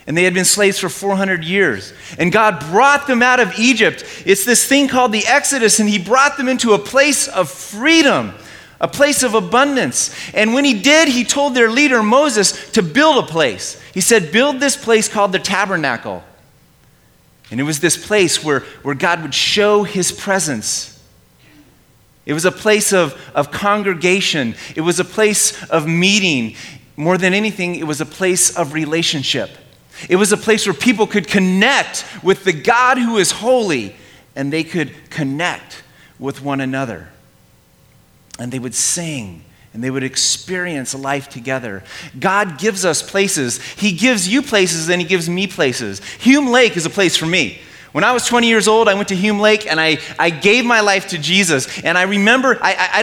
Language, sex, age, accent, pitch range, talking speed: English, male, 30-49, American, 165-225 Hz, 185 wpm